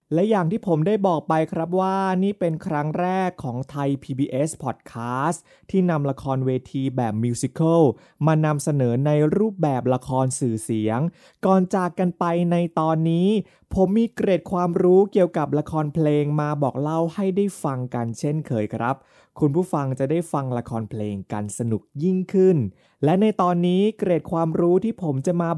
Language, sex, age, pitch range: Thai, male, 20-39, 130-180 Hz